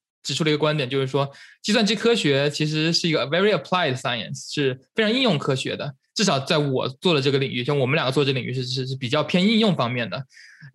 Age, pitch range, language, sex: 20-39, 140-180 Hz, Chinese, male